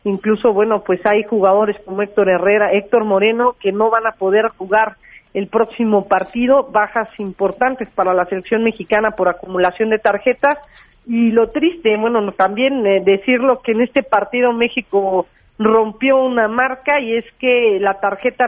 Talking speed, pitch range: 155 wpm, 205-245 Hz